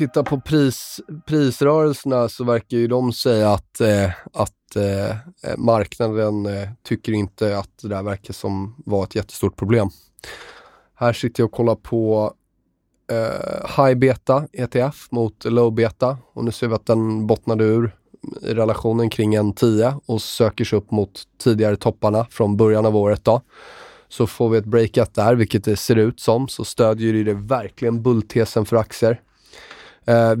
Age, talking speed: 20-39, 165 wpm